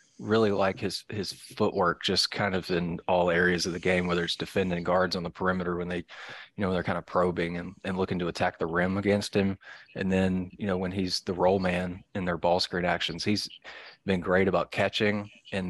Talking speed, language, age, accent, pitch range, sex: 225 wpm, English, 20-39, American, 90-105 Hz, male